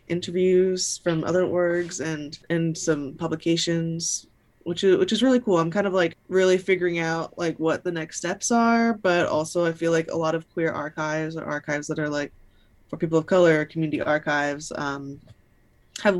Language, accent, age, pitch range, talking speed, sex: English, American, 20-39, 150-180 Hz, 185 wpm, female